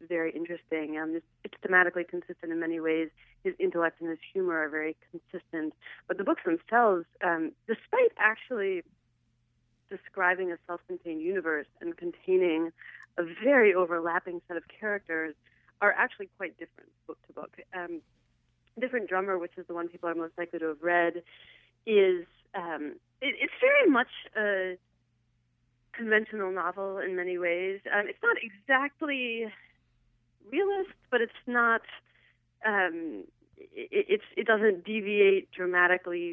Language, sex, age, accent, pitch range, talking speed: English, female, 30-49, American, 155-195 Hz, 130 wpm